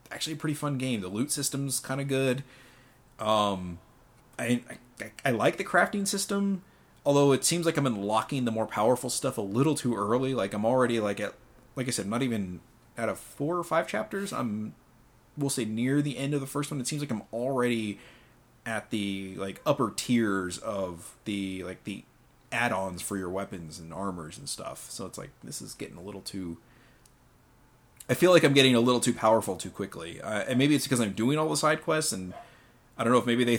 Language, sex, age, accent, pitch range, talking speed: English, male, 30-49, American, 100-135 Hz, 215 wpm